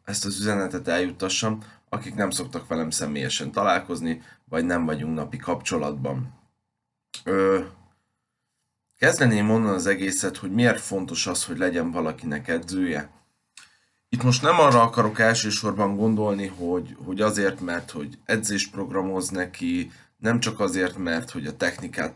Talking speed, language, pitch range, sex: 135 wpm, Hungarian, 95-120 Hz, male